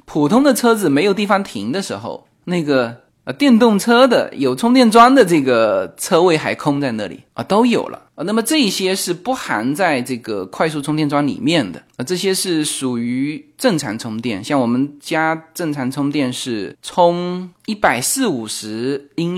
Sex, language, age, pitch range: male, Chinese, 20-39, 130-175 Hz